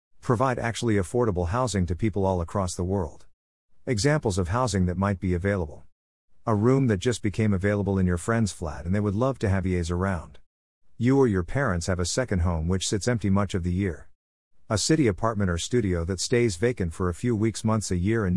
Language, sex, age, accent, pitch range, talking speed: English, male, 50-69, American, 90-115 Hz, 215 wpm